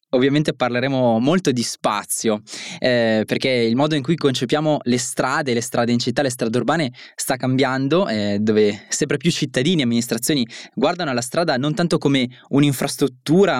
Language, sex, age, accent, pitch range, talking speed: Italian, male, 20-39, native, 115-145 Hz, 165 wpm